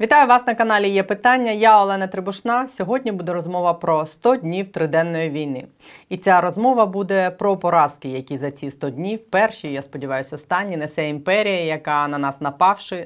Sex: female